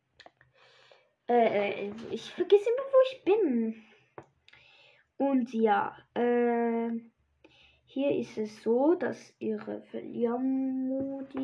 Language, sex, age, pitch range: German, female, 10-29, 215-285 Hz